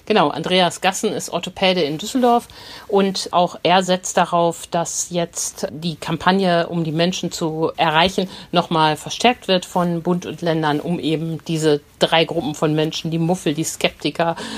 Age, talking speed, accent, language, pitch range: 50-69, 160 wpm, German, German, 155-185 Hz